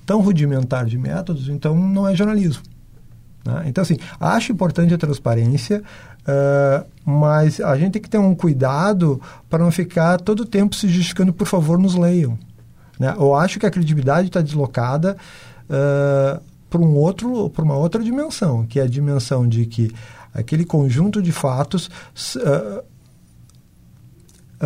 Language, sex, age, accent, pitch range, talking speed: Portuguese, male, 50-69, Brazilian, 140-185 Hz, 155 wpm